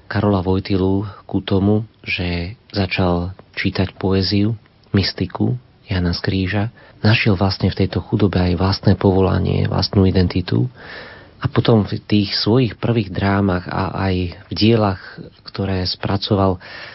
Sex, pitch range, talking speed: male, 95-105 Hz, 120 wpm